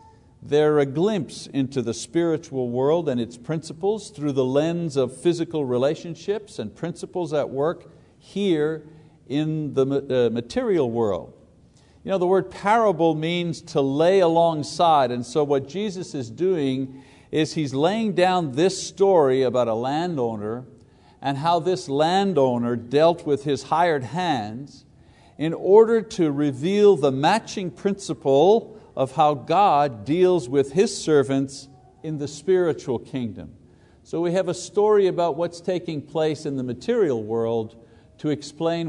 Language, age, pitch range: English, 50-69, 130-170 Hz